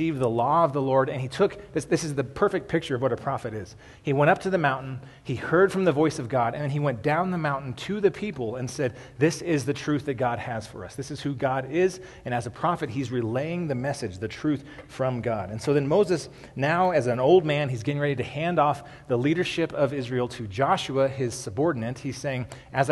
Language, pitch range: English, 120-150 Hz